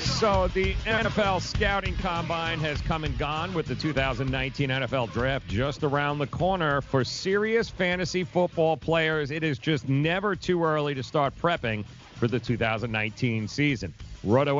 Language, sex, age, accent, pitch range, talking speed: English, male, 40-59, American, 125-160 Hz, 150 wpm